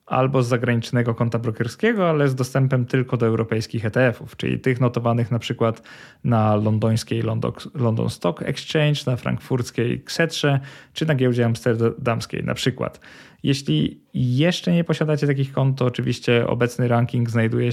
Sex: male